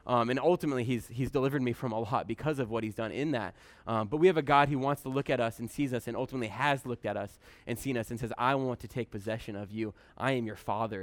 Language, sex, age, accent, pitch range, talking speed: English, male, 20-39, American, 110-140 Hz, 295 wpm